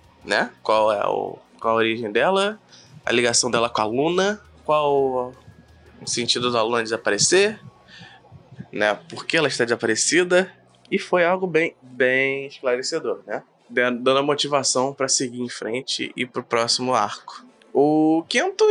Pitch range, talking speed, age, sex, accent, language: 125-170 Hz, 150 wpm, 20-39, male, Brazilian, Portuguese